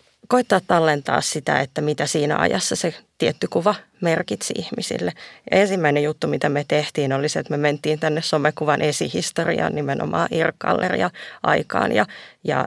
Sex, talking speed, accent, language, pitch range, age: female, 140 wpm, native, Finnish, 150-180 Hz, 30-49